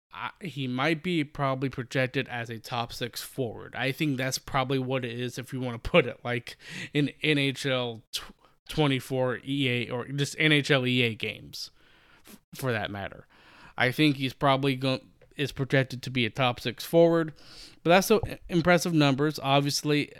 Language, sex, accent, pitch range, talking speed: English, male, American, 125-150 Hz, 155 wpm